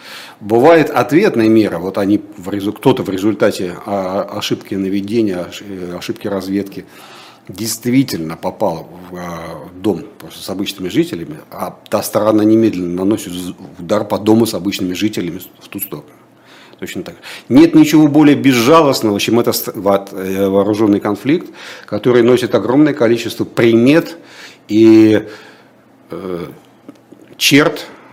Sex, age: male, 50-69